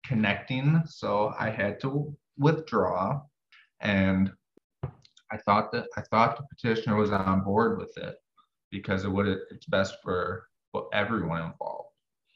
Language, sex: English, male